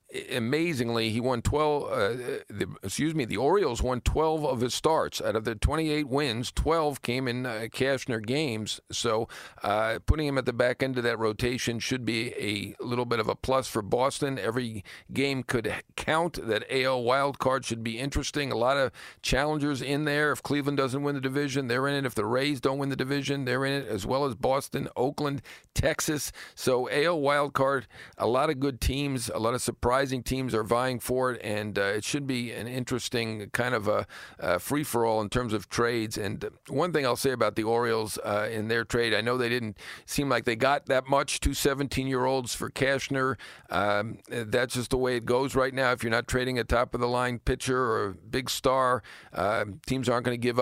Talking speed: 210 wpm